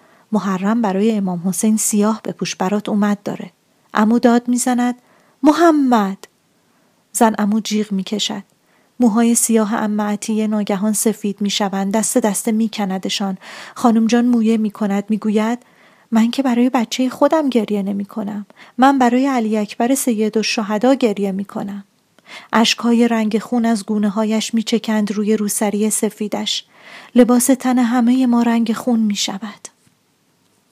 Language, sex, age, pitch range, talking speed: Persian, female, 30-49, 205-235 Hz, 125 wpm